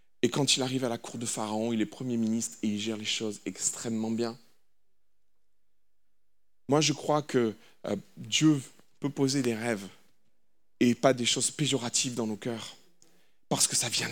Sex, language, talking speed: male, French, 175 wpm